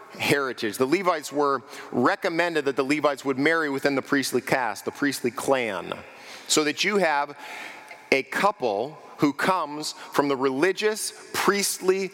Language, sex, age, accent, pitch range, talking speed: English, male, 40-59, American, 145-190 Hz, 145 wpm